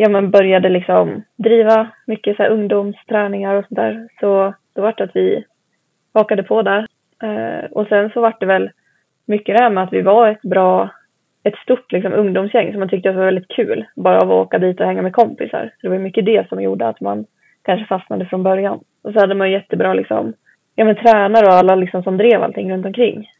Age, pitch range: 20-39, 185-215 Hz